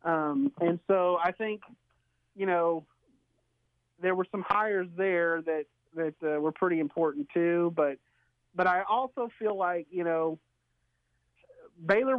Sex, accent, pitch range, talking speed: male, American, 155-200 Hz, 140 wpm